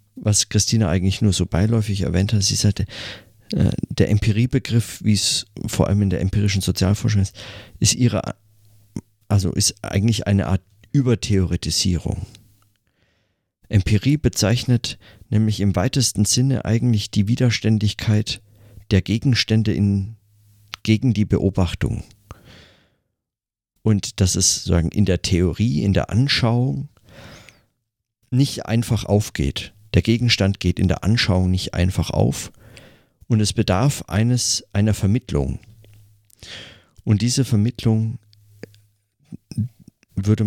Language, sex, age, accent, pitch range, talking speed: German, male, 50-69, German, 100-115 Hz, 115 wpm